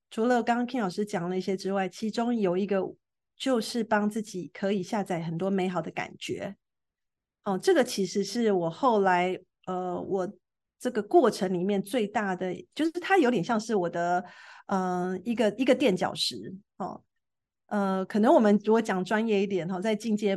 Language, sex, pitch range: Chinese, female, 185-220 Hz